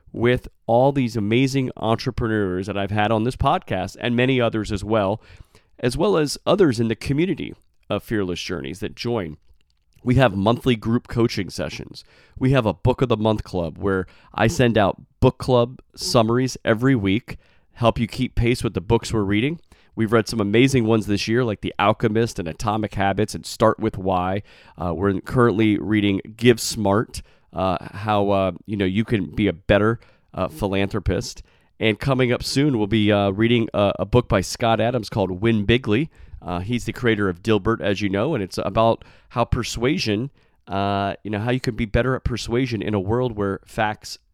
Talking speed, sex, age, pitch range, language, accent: 190 wpm, male, 30-49, 100-125 Hz, English, American